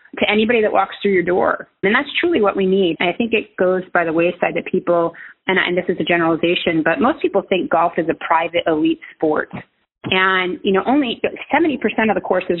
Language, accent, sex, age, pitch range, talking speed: English, American, female, 30-49, 160-190 Hz, 235 wpm